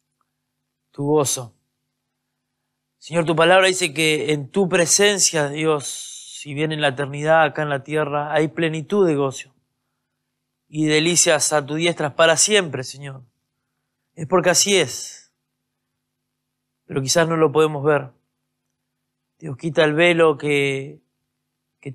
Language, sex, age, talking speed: Spanish, male, 20-39, 130 wpm